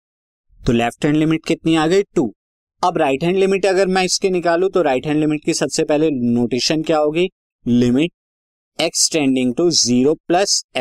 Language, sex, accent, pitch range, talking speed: Hindi, male, native, 120-165 Hz, 165 wpm